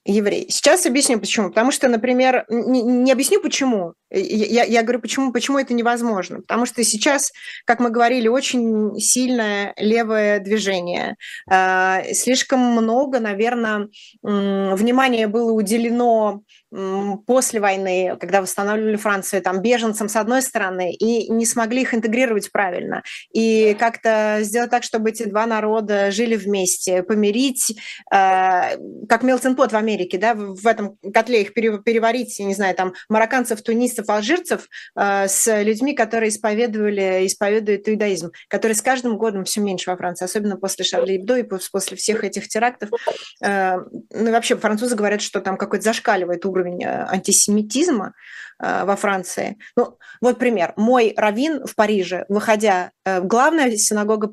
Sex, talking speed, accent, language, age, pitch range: female, 140 wpm, native, Russian, 20-39, 200-240 Hz